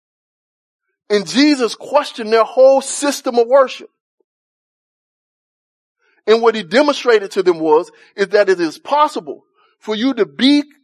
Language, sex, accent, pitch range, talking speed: English, male, American, 210-285 Hz, 135 wpm